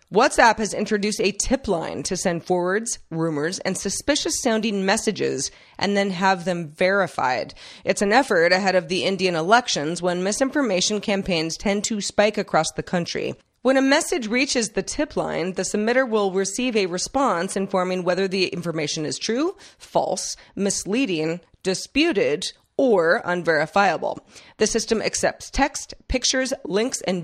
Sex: female